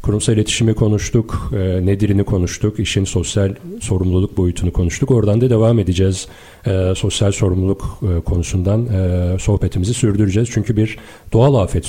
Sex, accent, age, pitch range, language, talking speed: male, native, 40-59, 95-115 Hz, Turkish, 135 wpm